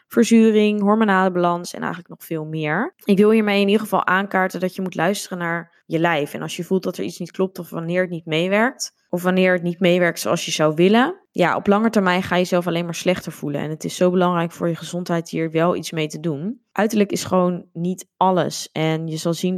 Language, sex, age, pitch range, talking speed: Dutch, female, 20-39, 170-190 Hz, 240 wpm